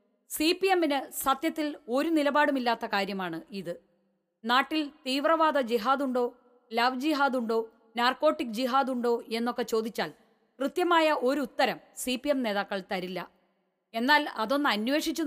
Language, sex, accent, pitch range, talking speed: Malayalam, female, native, 225-285 Hz, 105 wpm